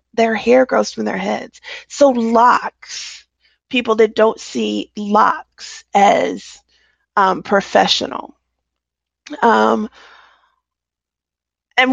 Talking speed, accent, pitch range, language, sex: 90 wpm, American, 200-255 Hz, English, female